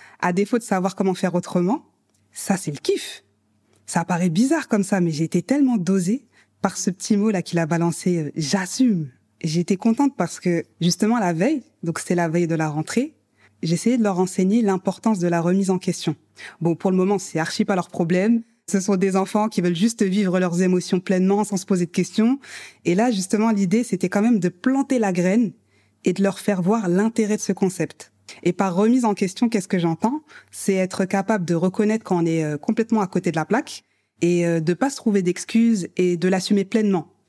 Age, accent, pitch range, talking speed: 20-39, French, 175-220 Hz, 210 wpm